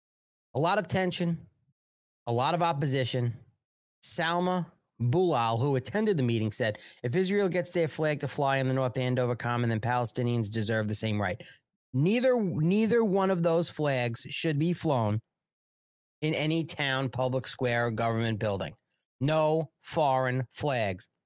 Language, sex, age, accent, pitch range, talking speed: English, male, 40-59, American, 125-180 Hz, 150 wpm